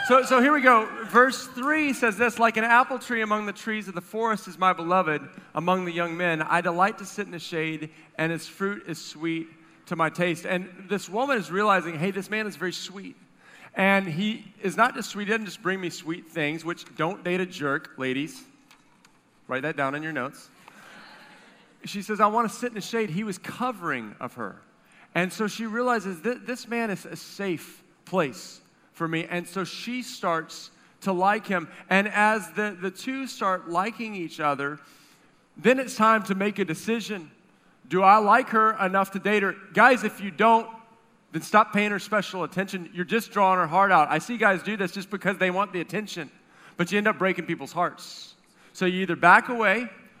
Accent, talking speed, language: American, 205 wpm, English